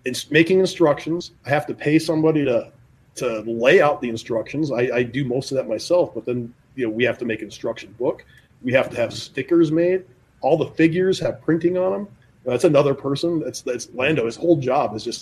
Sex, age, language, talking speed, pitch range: male, 30-49, English, 215 wpm, 125-155 Hz